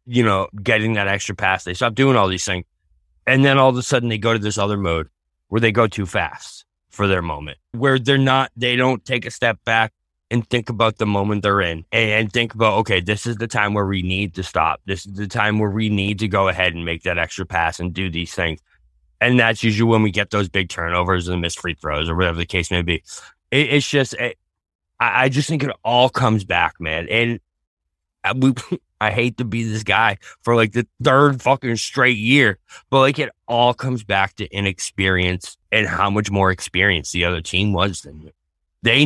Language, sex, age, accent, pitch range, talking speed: English, male, 20-39, American, 95-135 Hz, 220 wpm